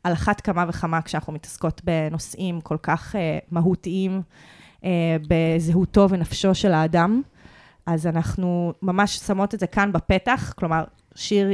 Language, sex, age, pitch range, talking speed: Hebrew, female, 20-39, 170-200 Hz, 135 wpm